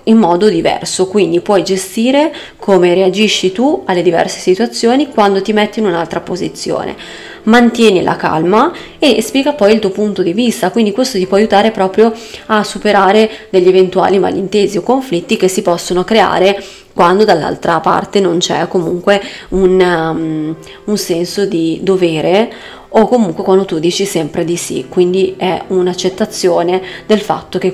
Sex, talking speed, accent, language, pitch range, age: female, 155 wpm, native, Italian, 180-215 Hz, 20-39